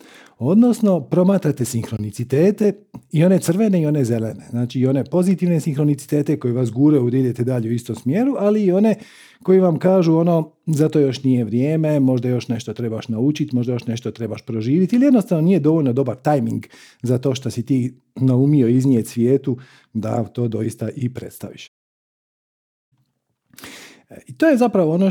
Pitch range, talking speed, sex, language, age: 125-190 Hz, 165 wpm, male, Croatian, 50-69